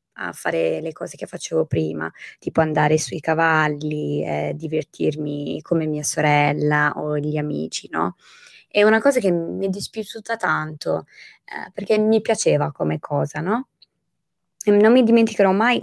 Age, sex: 20-39, female